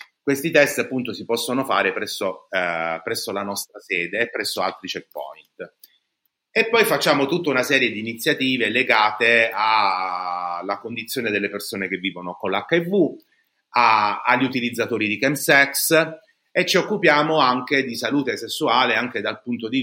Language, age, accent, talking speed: Italian, 30-49, native, 150 wpm